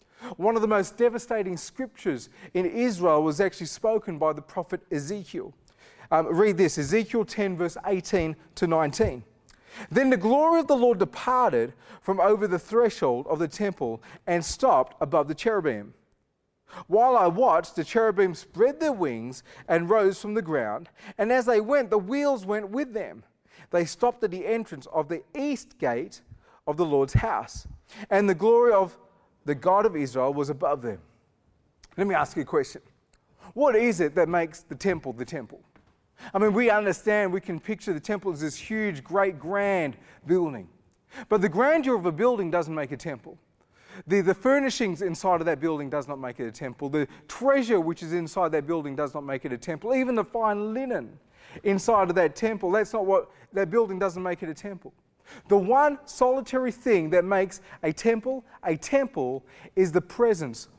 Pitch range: 165-230 Hz